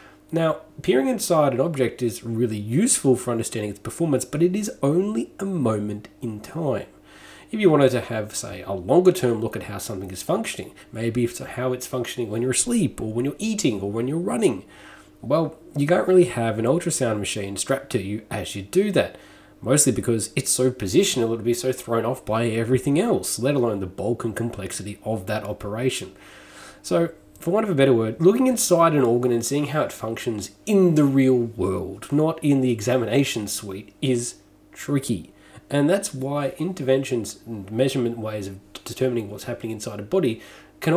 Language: English